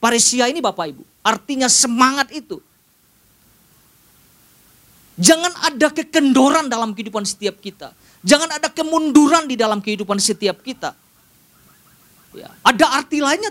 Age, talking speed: 40-59, 115 wpm